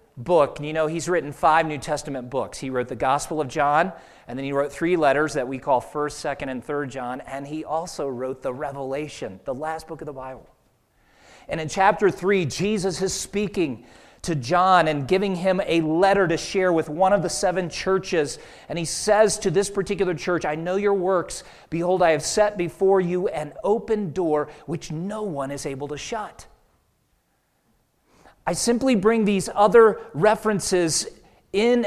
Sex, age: male, 40-59